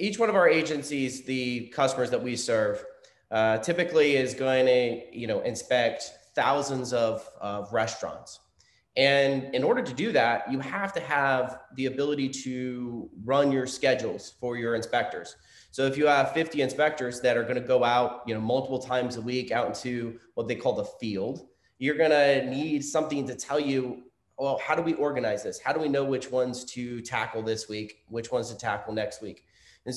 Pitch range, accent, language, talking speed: 125-150 Hz, American, English, 190 wpm